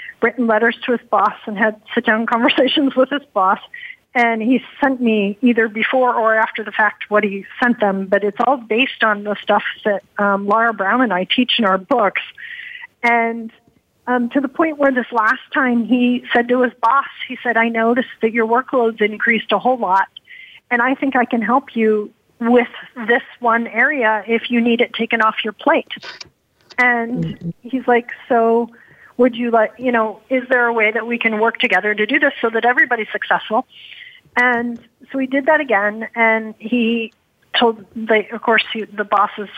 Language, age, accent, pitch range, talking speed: English, 40-59, American, 215-250 Hz, 195 wpm